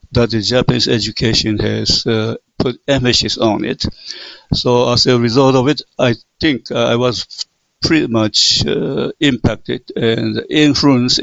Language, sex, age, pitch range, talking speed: English, male, 60-79, 115-130 Hz, 140 wpm